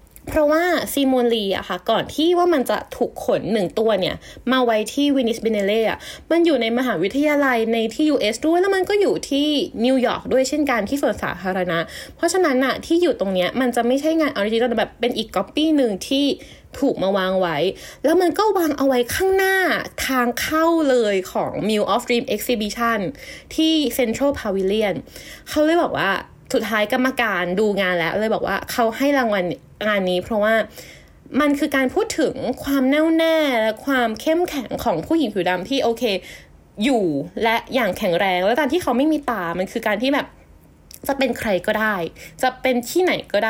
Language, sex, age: Thai, female, 20-39